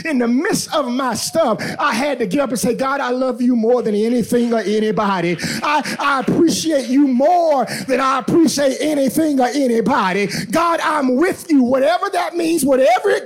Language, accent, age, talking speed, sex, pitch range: English, American, 30-49, 190 wpm, male, 235-290 Hz